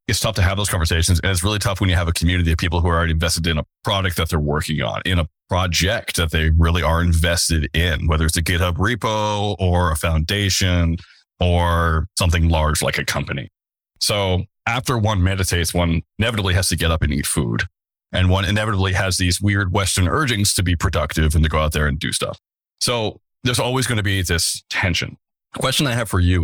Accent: American